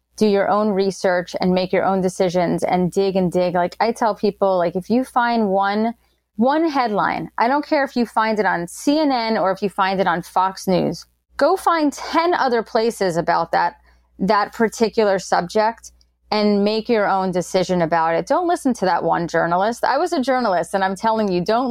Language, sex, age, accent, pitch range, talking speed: English, female, 30-49, American, 175-225 Hz, 200 wpm